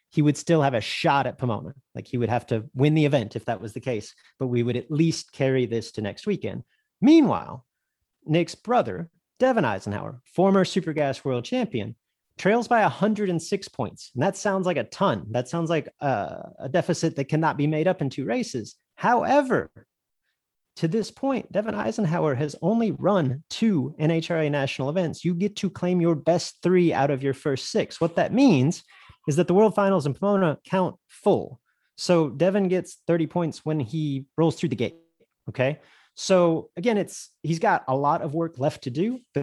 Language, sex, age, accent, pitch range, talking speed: English, male, 30-49, American, 135-190 Hz, 195 wpm